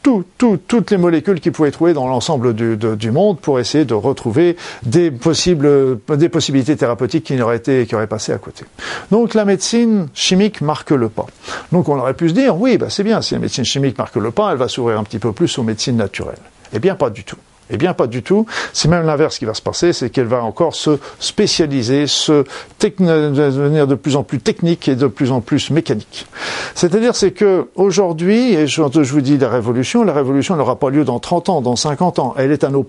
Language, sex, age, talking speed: French, male, 50-69, 230 wpm